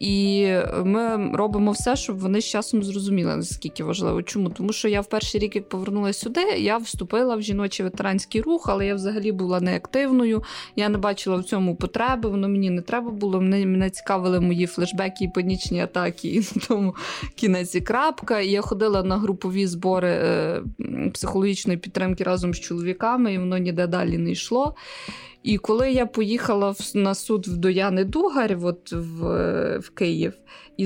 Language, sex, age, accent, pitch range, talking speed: Ukrainian, female, 20-39, native, 190-235 Hz, 170 wpm